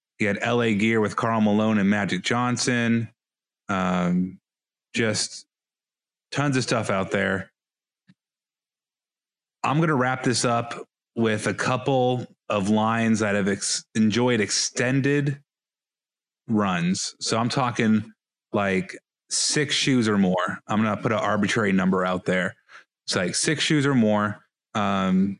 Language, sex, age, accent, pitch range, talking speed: English, male, 30-49, American, 100-120 Hz, 130 wpm